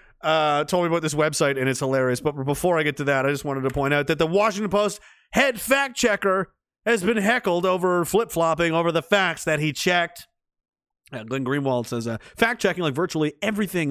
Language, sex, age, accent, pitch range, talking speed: English, male, 30-49, American, 165-220 Hz, 205 wpm